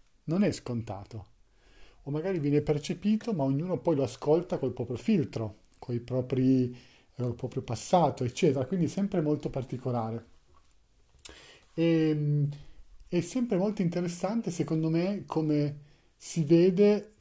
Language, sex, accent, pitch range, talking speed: Italian, male, native, 130-170 Hz, 120 wpm